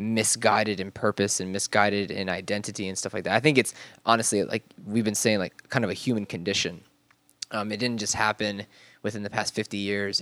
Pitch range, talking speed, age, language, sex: 100-115 Hz, 205 wpm, 20-39, English, male